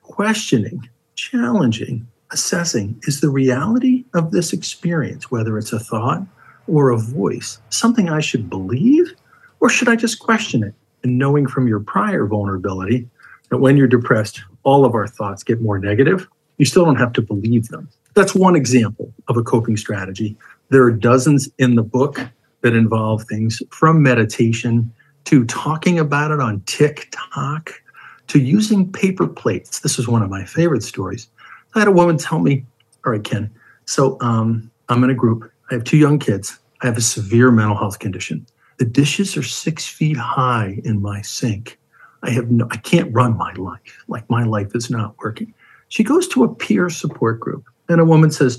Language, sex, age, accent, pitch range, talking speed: English, male, 50-69, American, 115-160 Hz, 180 wpm